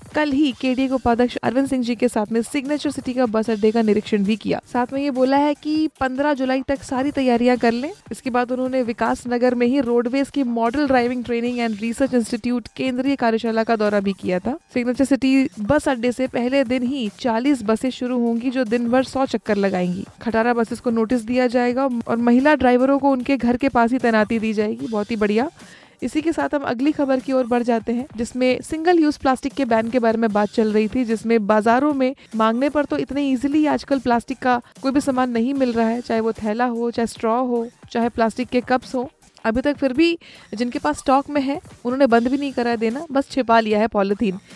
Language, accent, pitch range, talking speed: Hindi, native, 230-270 Hz, 230 wpm